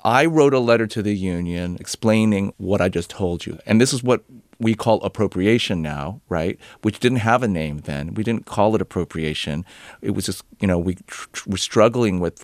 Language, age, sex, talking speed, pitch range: English, 40-59, male, 205 wpm, 90-110 Hz